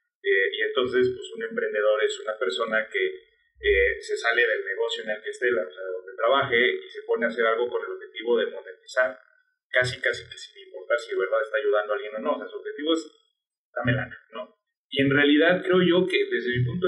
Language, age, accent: Spanish, 30-49, Mexican